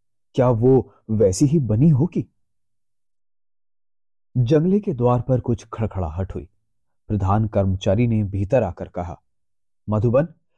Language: Hindi